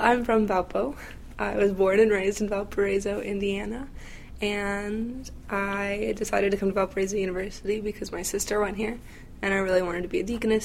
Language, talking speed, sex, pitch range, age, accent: English, 180 wpm, female, 185-210 Hz, 20-39, American